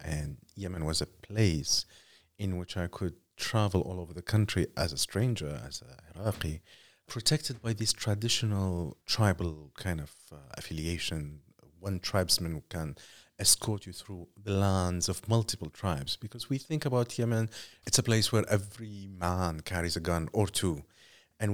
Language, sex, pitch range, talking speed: English, male, 90-115 Hz, 160 wpm